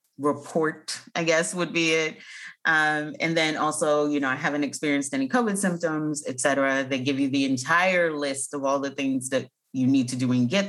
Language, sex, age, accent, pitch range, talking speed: English, female, 30-49, American, 145-195 Hz, 200 wpm